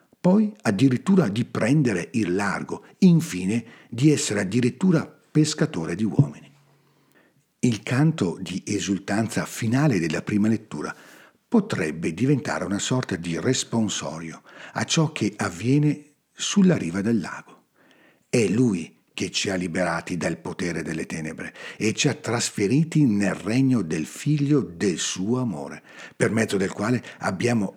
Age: 60-79